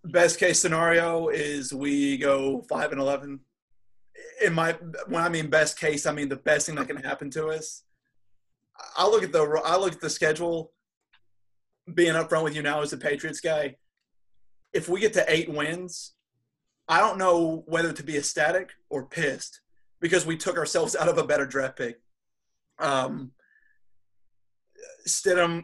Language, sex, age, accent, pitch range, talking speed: English, male, 30-49, American, 140-170 Hz, 170 wpm